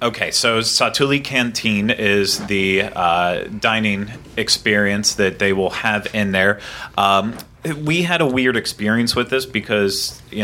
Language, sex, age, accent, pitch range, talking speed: English, male, 30-49, American, 90-115 Hz, 145 wpm